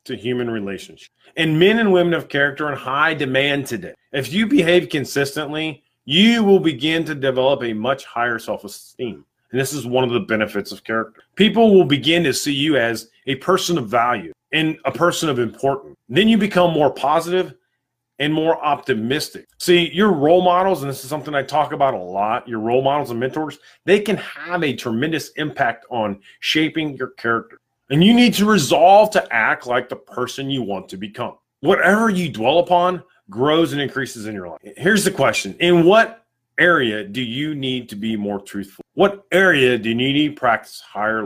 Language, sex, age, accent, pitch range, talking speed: English, male, 30-49, American, 120-170 Hz, 195 wpm